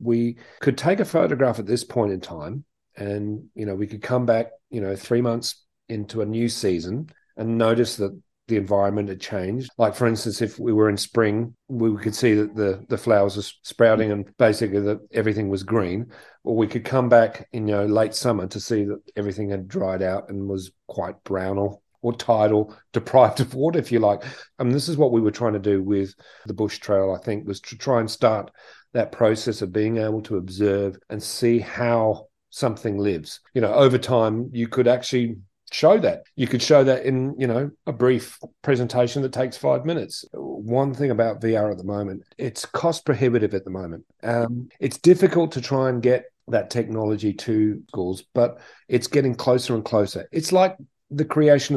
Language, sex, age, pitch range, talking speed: English, male, 40-59, 105-125 Hz, 205 wpm